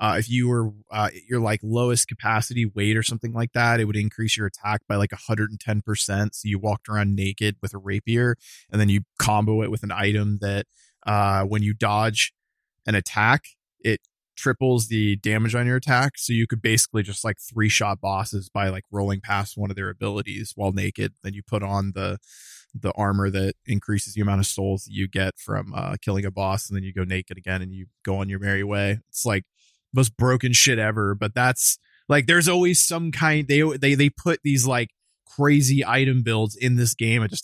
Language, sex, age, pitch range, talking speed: English, male, 20-39, 100-120 Hz, 220 wpm